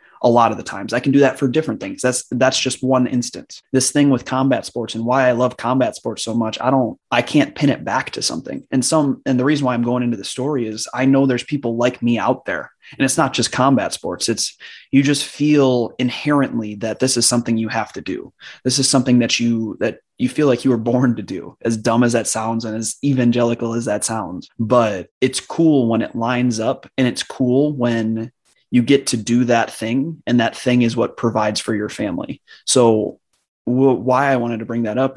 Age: 20-39